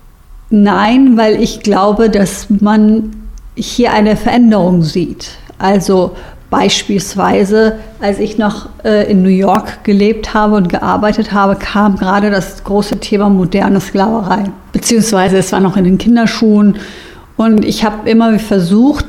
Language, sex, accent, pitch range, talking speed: German, female, German, 195-225 Hz, 130 wpm